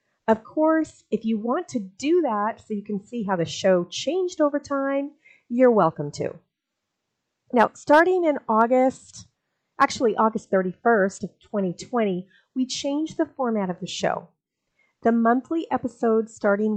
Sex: female